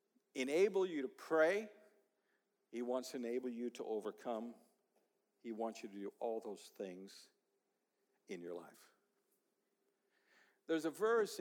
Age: 50-69